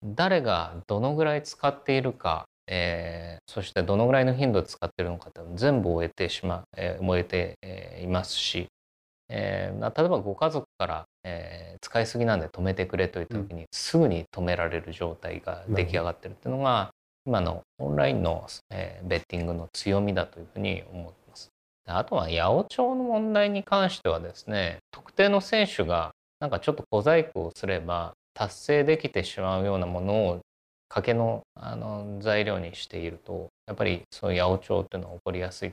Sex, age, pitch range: male, 20-39, 85-135 Hz